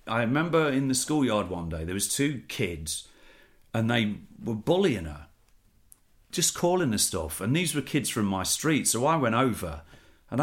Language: English